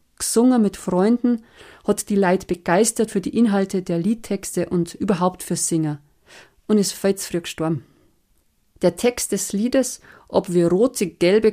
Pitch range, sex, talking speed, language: 170-215 Hz, female, 150 wpm, German